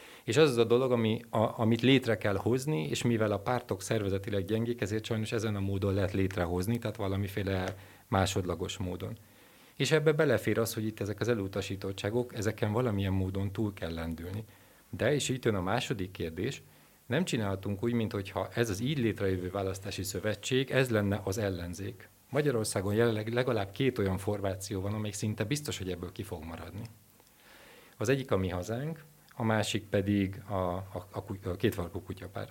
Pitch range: 95-120 Hz